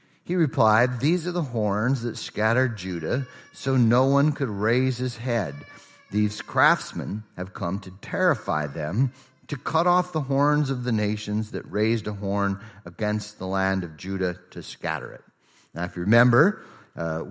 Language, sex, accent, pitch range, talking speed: English, male, American, 100-120 Hz, 165 wpm